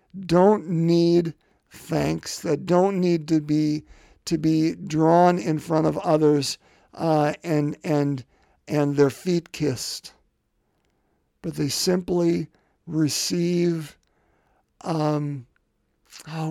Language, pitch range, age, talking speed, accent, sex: English, 130-165 Hz, 50-69, 100 wpm, American, male